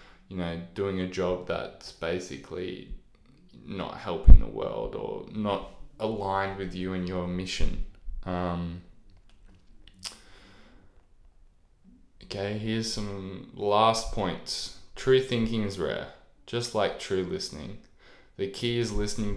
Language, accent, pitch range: English, Australian, 90-110 Hz